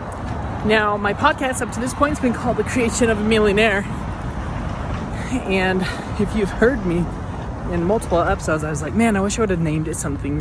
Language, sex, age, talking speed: English, male, 20-39, 200 wpm